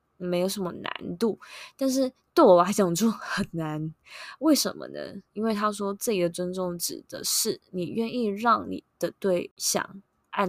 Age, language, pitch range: 20-39, Chinese, 175-205 Hz